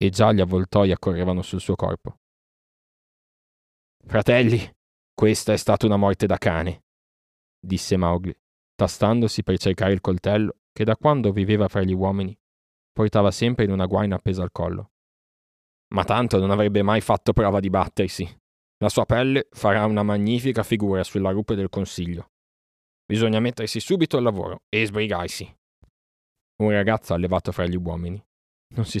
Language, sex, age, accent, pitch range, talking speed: Italian, male, 20-39, native, 90-110 Hz, 150 wpm